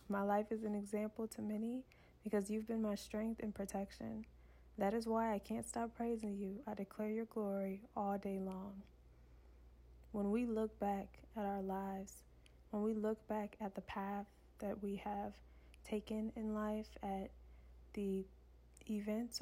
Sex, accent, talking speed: female, American, 160 wpm